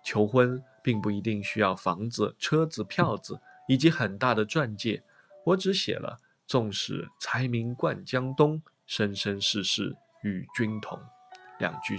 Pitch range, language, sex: 115-185 Hz, Chinese, male